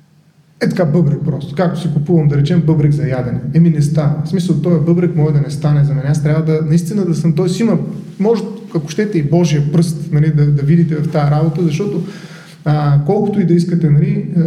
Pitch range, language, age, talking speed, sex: 150-175 Hz, Bulgarian, 30-49, 225 wpm, male